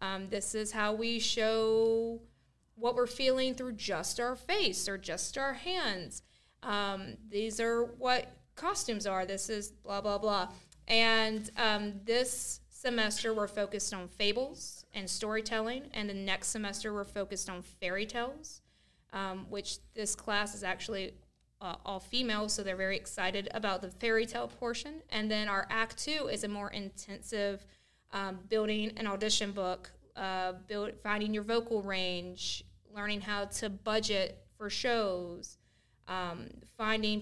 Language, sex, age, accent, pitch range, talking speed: English, female, 20-39, American, 195-225 Hz, 150 wpm